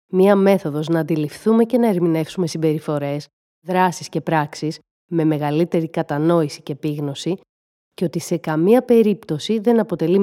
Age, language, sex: 30-49, Greek, female